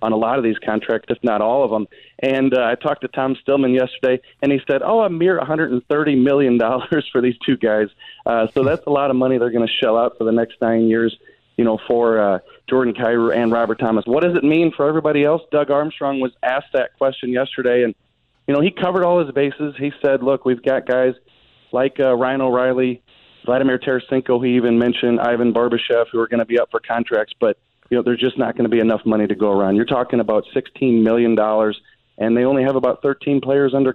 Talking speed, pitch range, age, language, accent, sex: 230 wpm, 110-135 Hz, 30-49, English, American, male